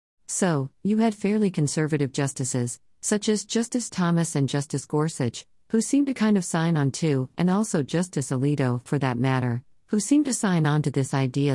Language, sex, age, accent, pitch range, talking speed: English, female, 50-69, American, 130-165 Hz, 185 wpm